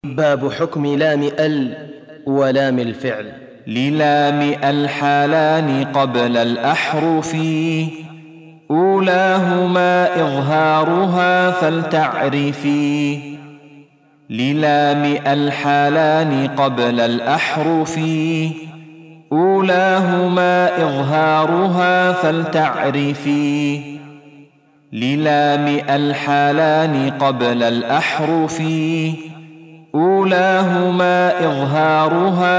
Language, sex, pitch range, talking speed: Arabic, male, 145-160 Hz, 40 wpm